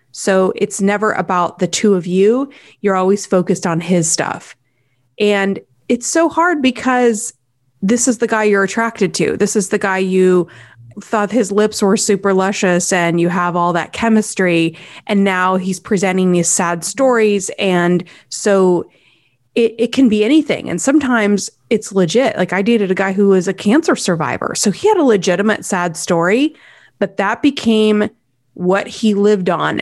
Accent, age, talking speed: American, 30-49, 170 wpm